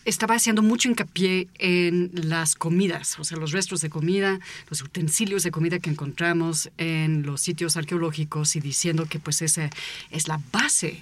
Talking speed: 170 wpm